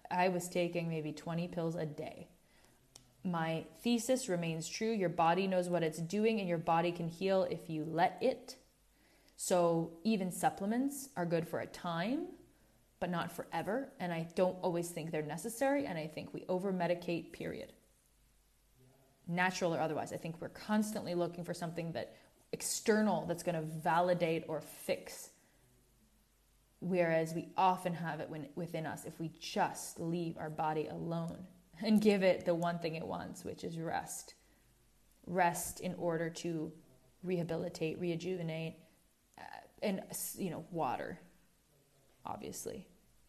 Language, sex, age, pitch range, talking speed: English, female, 20-39, 165-185 Hz, 145 wpm